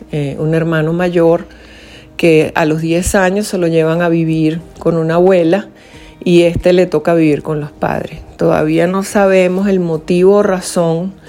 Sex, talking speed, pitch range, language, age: female, 170 wpm, 160-190 Hz, Spanish, 40-59